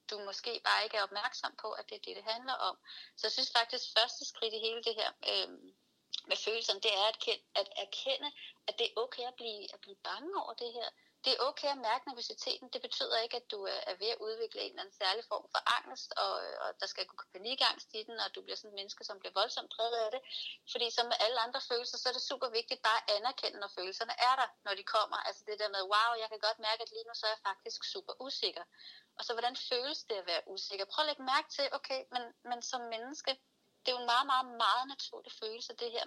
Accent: native